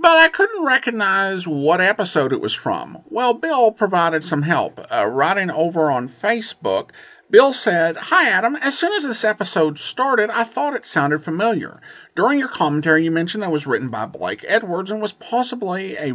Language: English